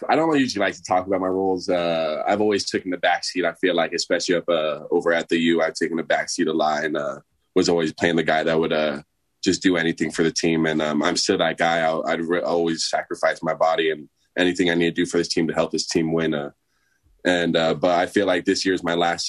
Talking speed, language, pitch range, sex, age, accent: 270 wpm, English, 80-90 Hz, male, 20-39, American